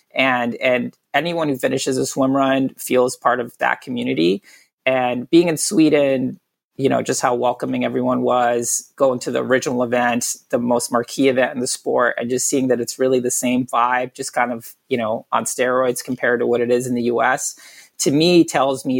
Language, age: English, 30-49